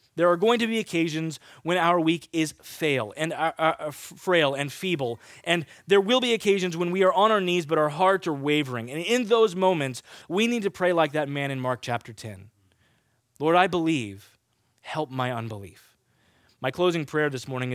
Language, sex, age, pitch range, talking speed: English, male, 20-39, 120-165 Hz, 190 wpm